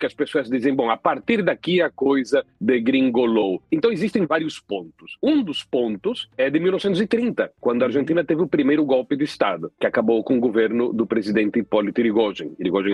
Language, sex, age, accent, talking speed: Portuguese, male, 40-59, Brazilian, 185 wpm